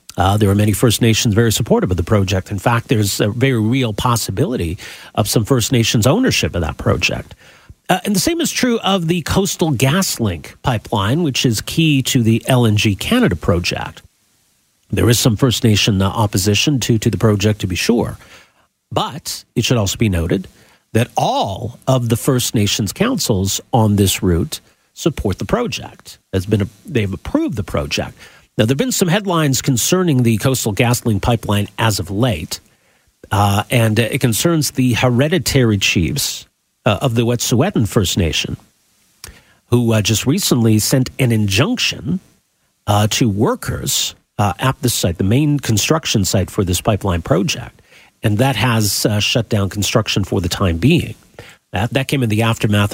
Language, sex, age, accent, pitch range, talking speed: English, male, 50-69, American, 105-130 Hz, 175 wpm